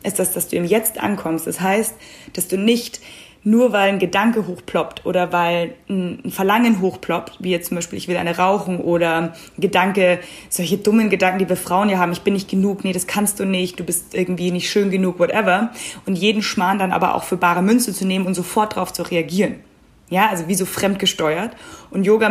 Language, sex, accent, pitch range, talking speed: German, female, German, 180-215 Hz, 215 wpm